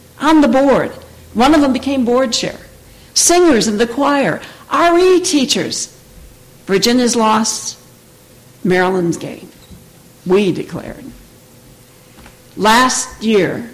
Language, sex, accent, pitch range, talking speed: English, female, American, 180-245 Hz, 95 wpm